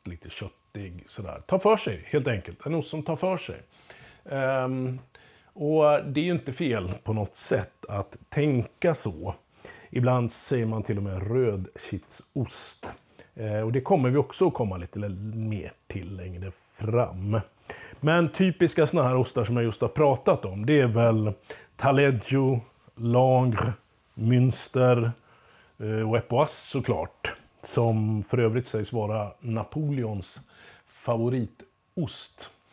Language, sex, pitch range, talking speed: Swedish, male, 105-135 Hz, 135 wpm